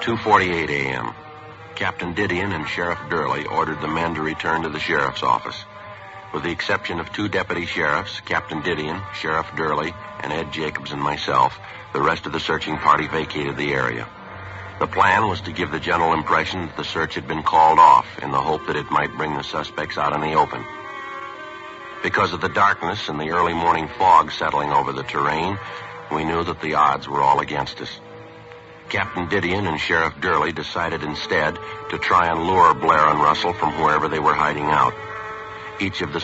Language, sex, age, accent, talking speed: English, male, 50-69, American, 185 wpm